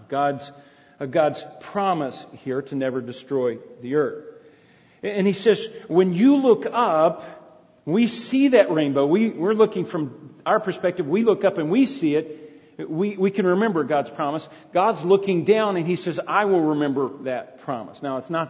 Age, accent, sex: 40-59, American, male